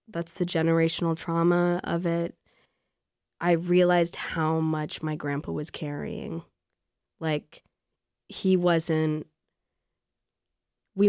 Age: 20-39